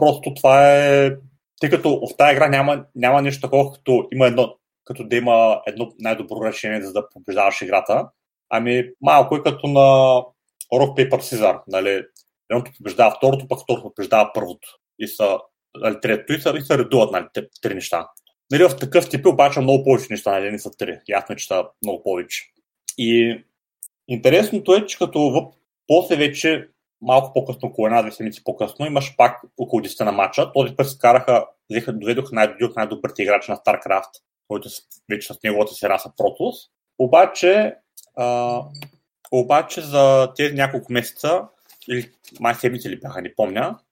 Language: Bulgarian